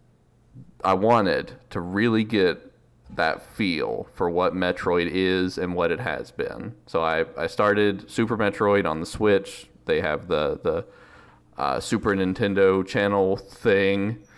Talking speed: 140 wpm